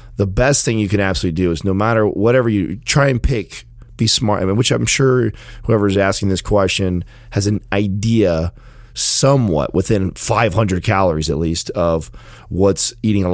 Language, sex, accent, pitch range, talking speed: English, male, American, 85-115 Hz, 185 wpm